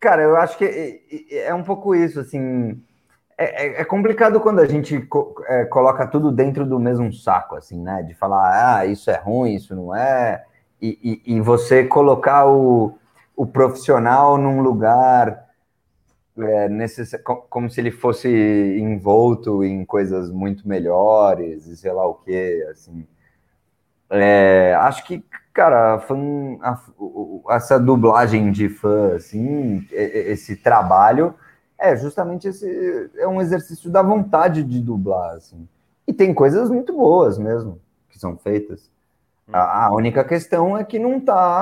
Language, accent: Portuguese, Brazilian